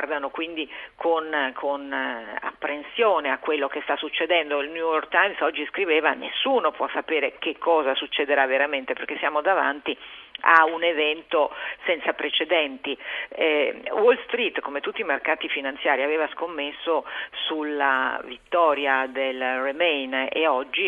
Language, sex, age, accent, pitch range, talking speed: Italian, female, 50-69, native, 150-180 Hz, 135 wpm